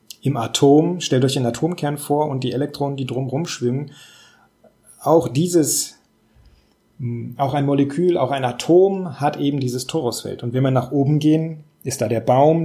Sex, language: male, German